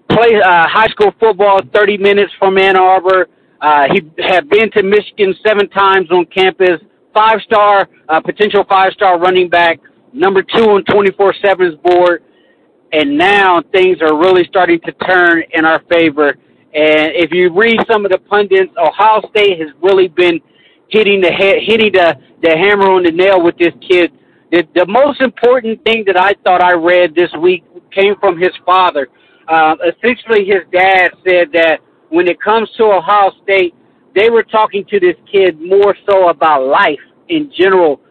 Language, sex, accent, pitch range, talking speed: English, male, American, 170-205 Hz, 170 wpm